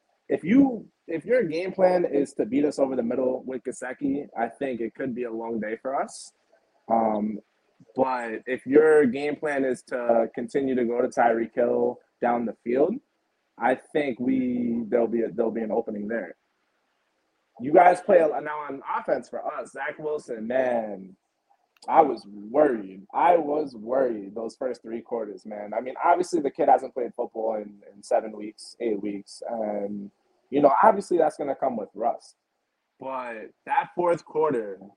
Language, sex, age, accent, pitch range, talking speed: English, male, 20-39, American, 110-150 Hz, 170 wpm